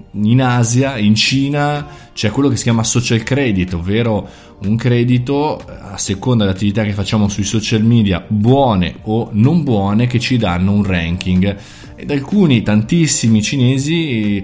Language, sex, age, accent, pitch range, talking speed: Italian, male, 20-39, native, 100-125 Hz, 145 wpm